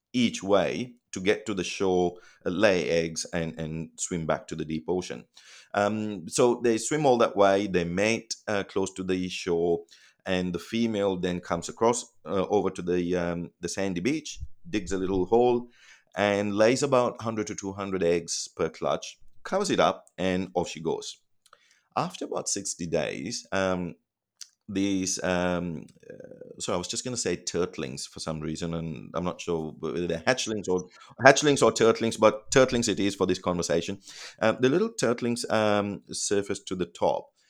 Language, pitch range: English, 90-110 Hz